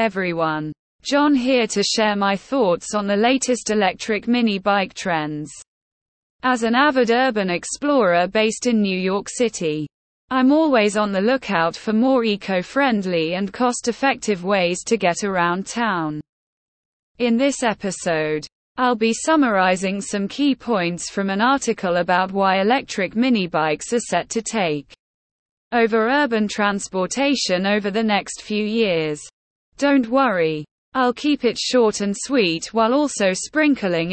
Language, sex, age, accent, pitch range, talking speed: English, female, 20-39, British, 185-245 Hz, 140 wpm